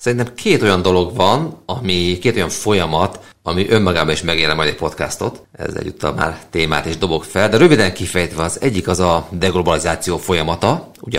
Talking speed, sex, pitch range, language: 175 wpm, male, 80-95 Hz, Hungarian